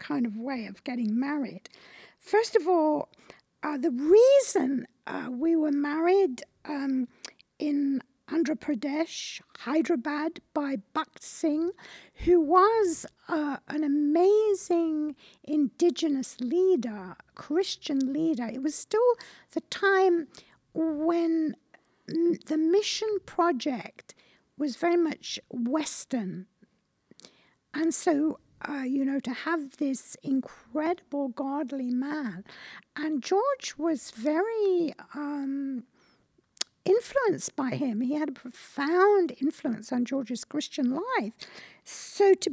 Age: 60-79